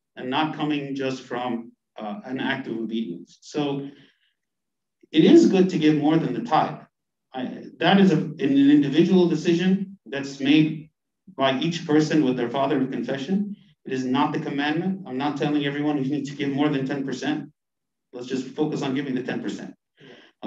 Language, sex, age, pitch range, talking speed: English, male, 50-69, 140-185 Hz, 180 wpm